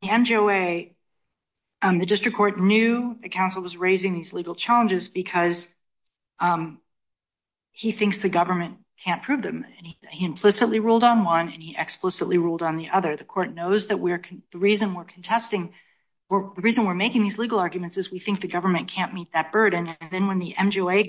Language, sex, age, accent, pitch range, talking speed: English, female, 40-59, American, 165-195 Hz, 195 wpm